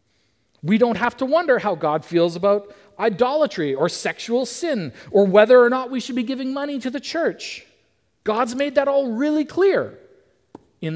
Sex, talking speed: male, 175 wpm